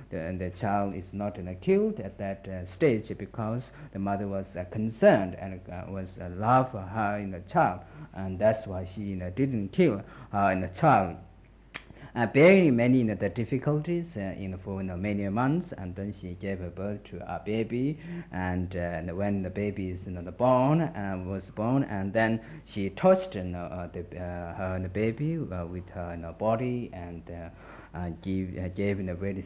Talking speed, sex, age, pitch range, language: 150 wpm, male, 50-69, 95-120 Hz, Italian